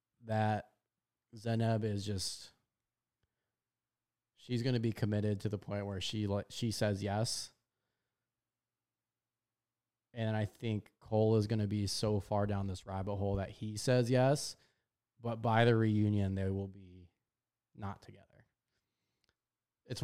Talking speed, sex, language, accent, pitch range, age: 135 wpm, male, English, American, 100-120 Hz, 20-39